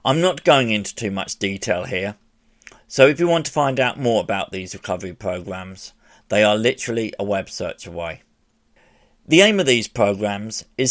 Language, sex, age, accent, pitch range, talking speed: English, male, 50-69, British, 100-135 Hz, 180 wpm